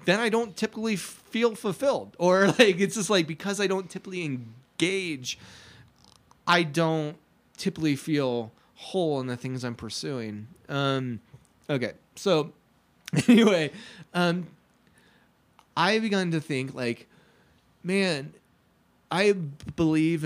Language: English